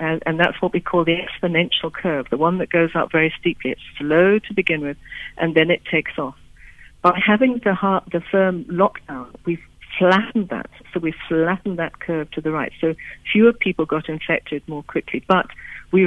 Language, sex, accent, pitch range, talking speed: English, female, British, 165-195 Hz, 195 wpm